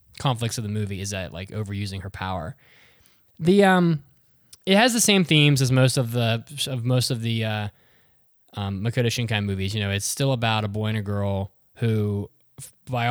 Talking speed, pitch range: 190 wpm, 100-120 Hz